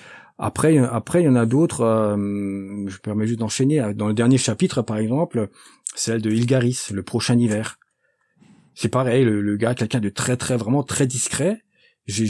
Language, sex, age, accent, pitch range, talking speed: French, male, 40-59, French, 100-130 Hz, 185 wpm